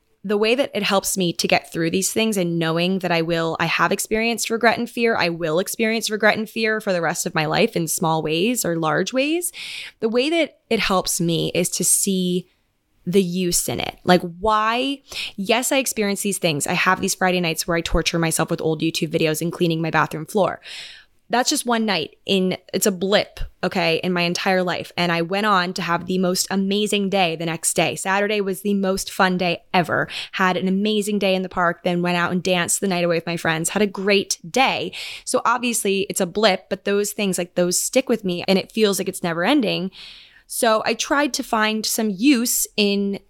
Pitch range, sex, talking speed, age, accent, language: 170-210 Hz, female, 225 wpm, 10-29, American, English